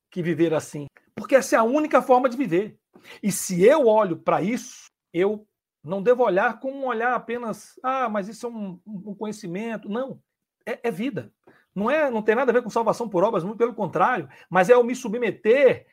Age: 60-79